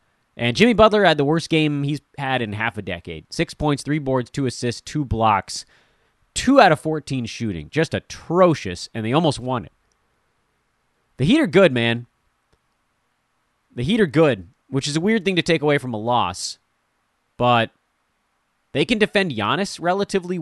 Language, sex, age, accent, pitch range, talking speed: English, male, 30-49, American, 105-150 Hz, 175 wpm